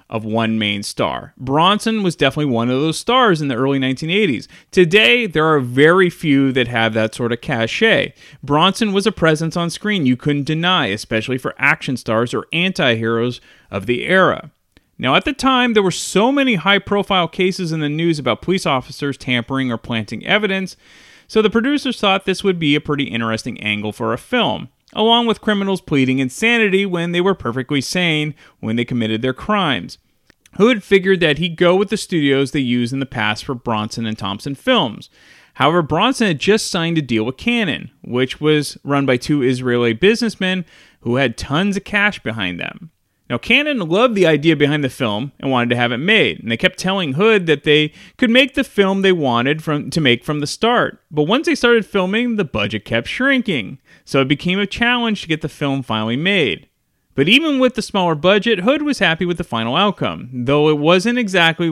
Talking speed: 195 wpm